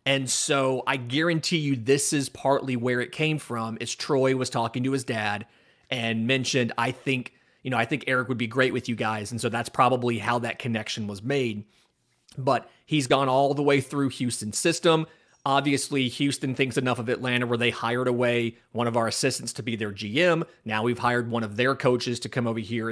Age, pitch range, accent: 30-49, 120-145 Hz, American